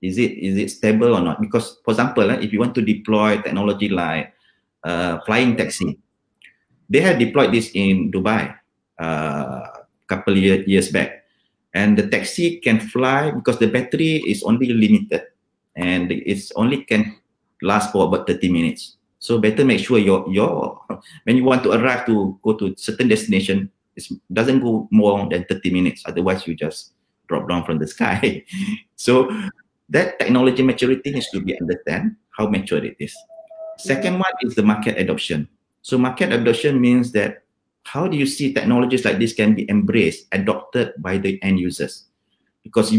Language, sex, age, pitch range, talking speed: English, male, 30-49, 100-140 Hz, 170 wpm